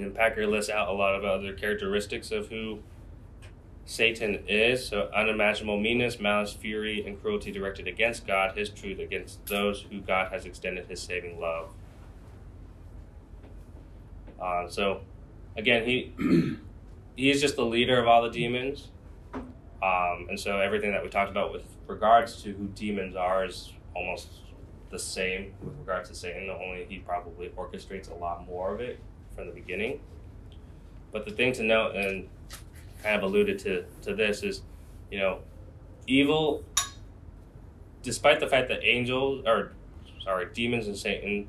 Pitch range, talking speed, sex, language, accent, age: 90-105 Hz, 155 wpm, male, English, American, 20-39